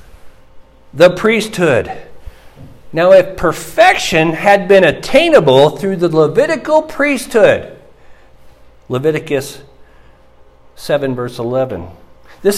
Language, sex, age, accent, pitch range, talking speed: English, male, 60-79, American, 170-225 Hz, 80 wpm